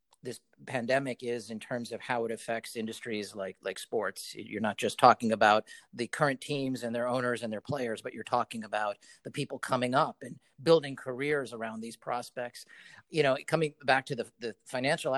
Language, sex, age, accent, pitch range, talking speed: English, male, 40-59, American, 115-130 Hz, 195 wpm